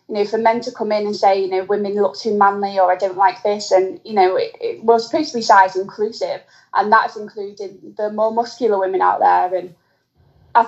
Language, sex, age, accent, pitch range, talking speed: English, female, 20-39, British, 190-215 Hz, 235 wpm